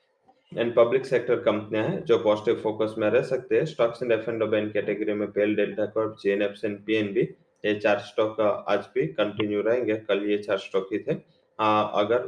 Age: 20-39